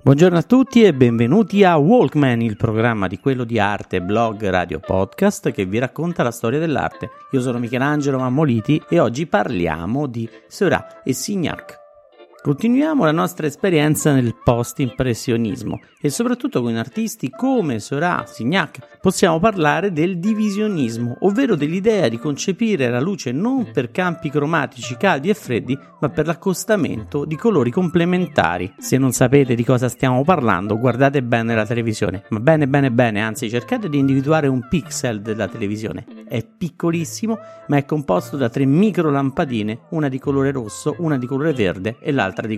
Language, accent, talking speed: Italian, native, 160 wpm